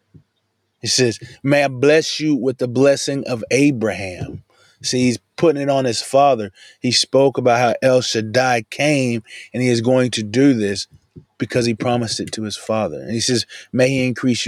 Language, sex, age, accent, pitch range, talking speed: English, male, 20-39, American, 105-125 Hz, 185 wpm